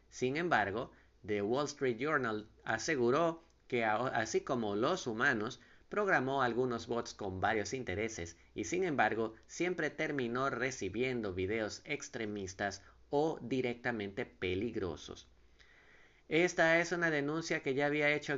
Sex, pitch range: male, 115-150 Hz